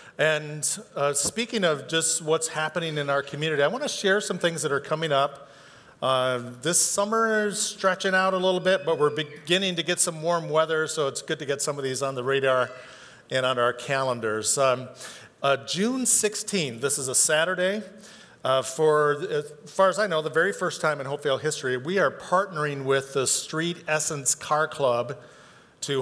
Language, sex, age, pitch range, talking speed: English, male, 50-69, 135-170 Hz, 195 wpm